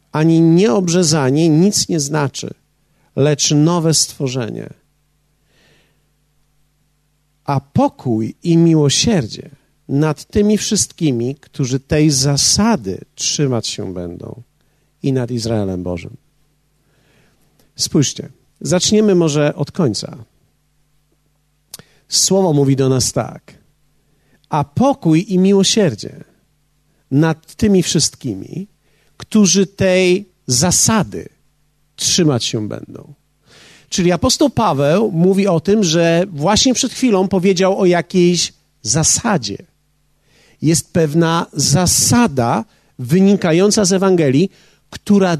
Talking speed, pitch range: 90 wpm, 145-185 Hz